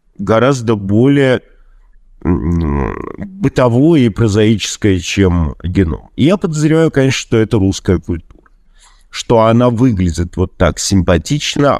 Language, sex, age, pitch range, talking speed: Russian, male, 50-69, 100-130 Hz, 100 wpm